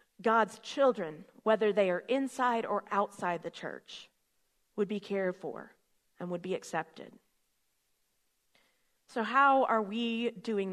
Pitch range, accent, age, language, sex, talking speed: 205-255 Hz, American, 40-59, English, female, 130 wpm